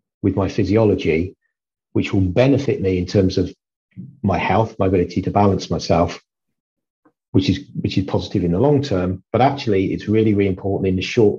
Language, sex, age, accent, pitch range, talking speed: English, male, 40-59, British, 95-125 Hz, 185 wpm